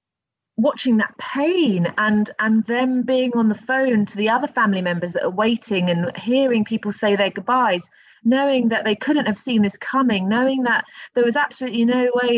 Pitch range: 175-235 Hz